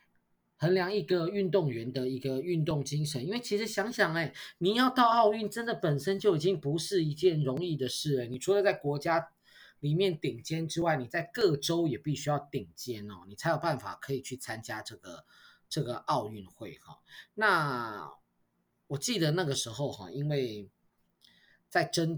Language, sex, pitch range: Chinese, male, 120-175 Hz